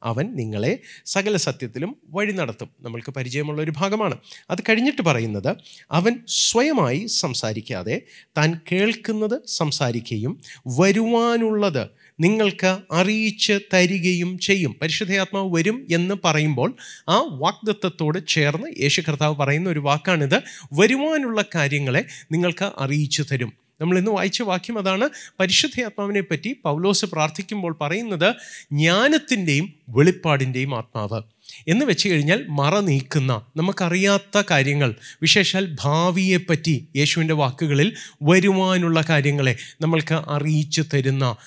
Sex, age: male, 30-49